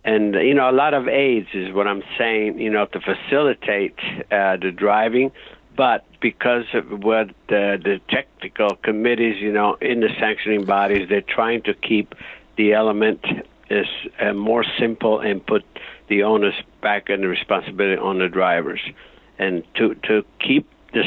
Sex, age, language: male, 60-79, English